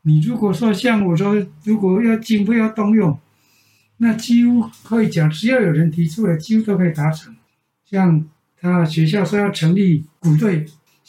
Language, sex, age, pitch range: Chinese, male, 60-79, 155-210 Hz